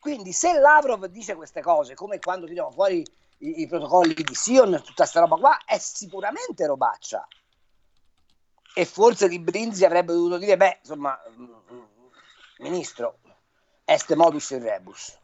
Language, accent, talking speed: Italian, native, 140 wpm